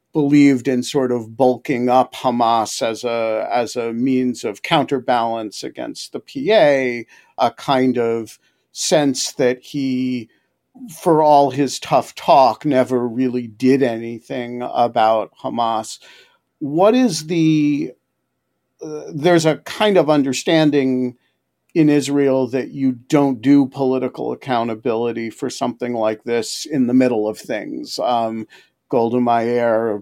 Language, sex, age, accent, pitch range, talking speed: English, male, 50-69, American, 125-155 Hz, 125 wpm